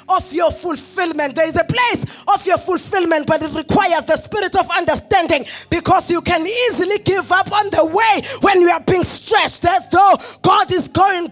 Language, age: English, 20-39